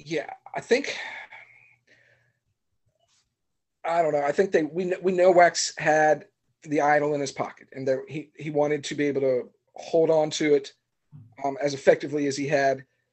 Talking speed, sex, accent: 175 wpm, male, American